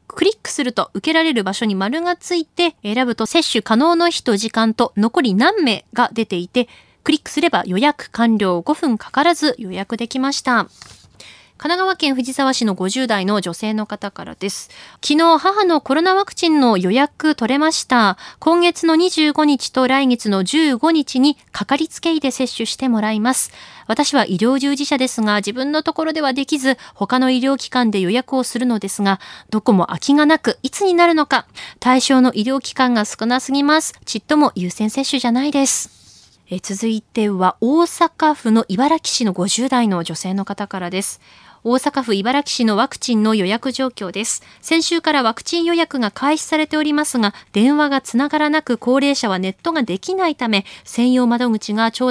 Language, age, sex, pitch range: Japanese, 20-39, female, 210-300 Hz